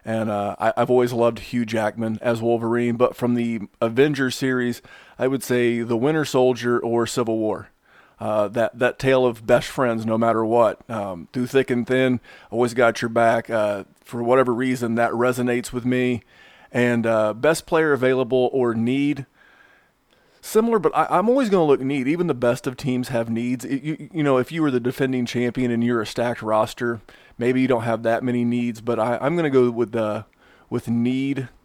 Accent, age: American, 30-49